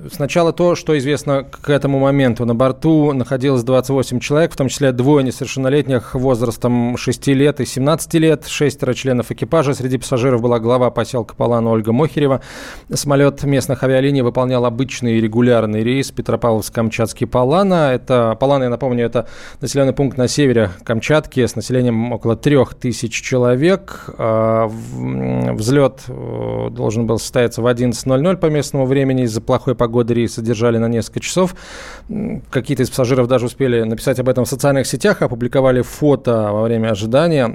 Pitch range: 115-135 Hz